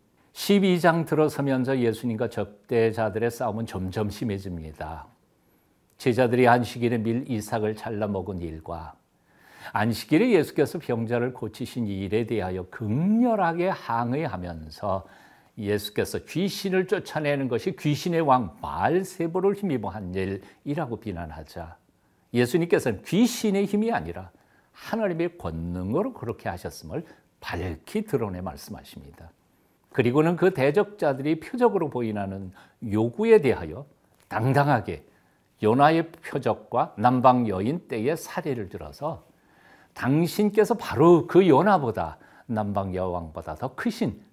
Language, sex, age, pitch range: Korean, male, 60-79, 100-165 Hz